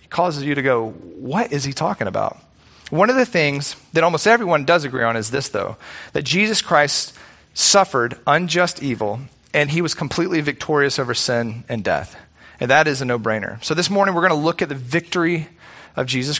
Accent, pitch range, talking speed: American, 135-170 Hz, 200 wpm